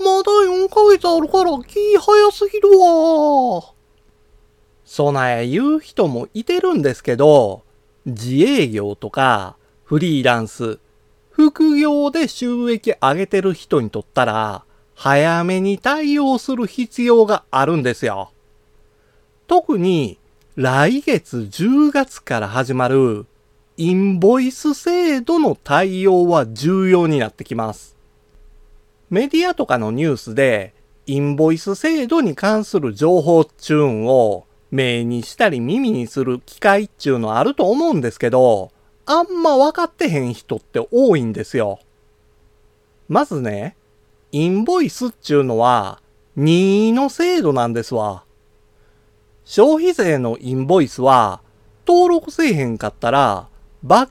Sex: male